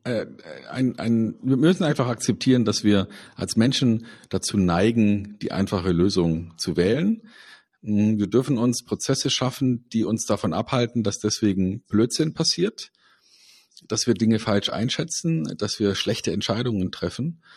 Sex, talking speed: male, 130 wpm